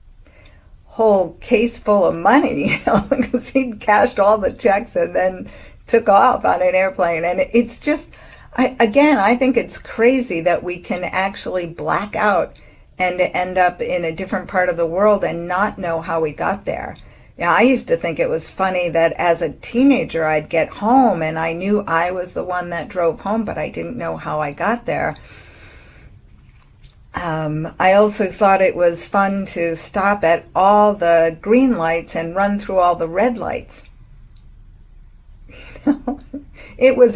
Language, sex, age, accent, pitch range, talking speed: English, female, 50-69, American, 165-215 Hz, 175 wpm